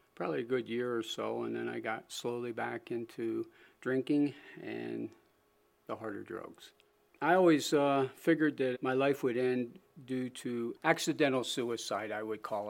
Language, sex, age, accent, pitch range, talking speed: English, male, 50-69, American, 115-140 Hz, 160 wpm